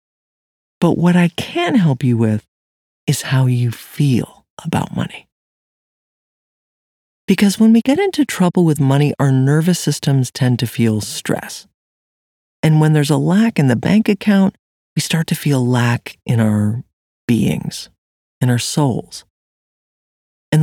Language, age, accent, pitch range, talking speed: English, 40-59, American, 110-170 Hz, 145 wpm